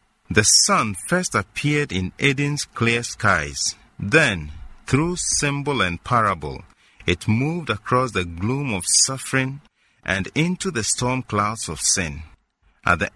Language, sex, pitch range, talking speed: English, male, 90-130 Hz, 130 wpm